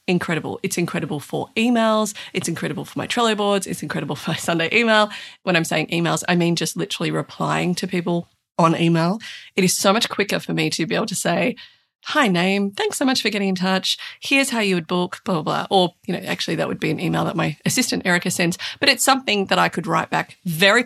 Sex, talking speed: female, 235 wpm